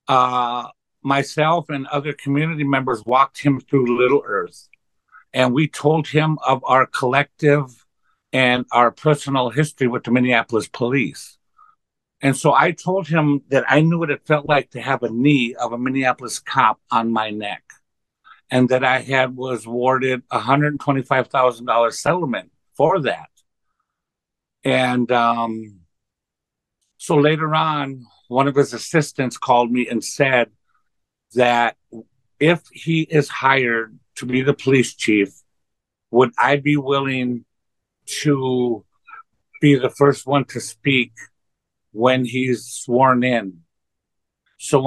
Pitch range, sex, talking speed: 120-145 Hz, male, 140 wpm